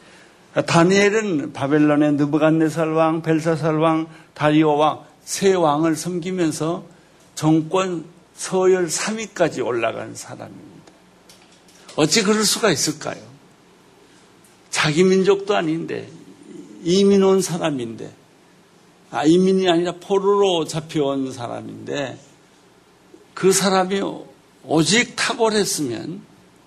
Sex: male